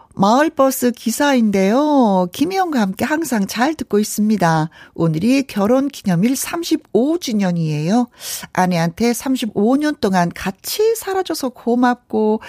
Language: Korean